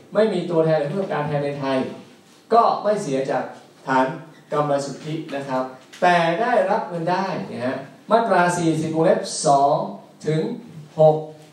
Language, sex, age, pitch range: Thai, male, 20-39, 130-170 Hz